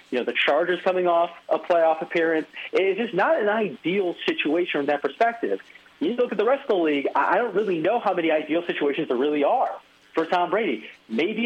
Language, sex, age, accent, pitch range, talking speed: English, male, 40-59, American, 155-210 Hz, 215 wpm